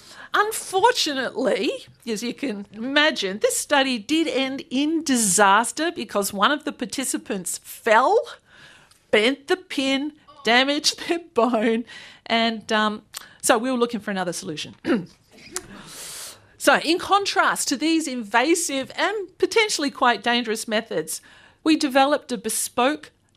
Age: 50-69